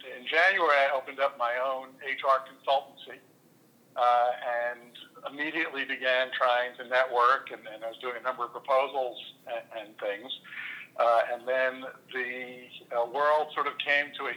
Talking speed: 165 wpm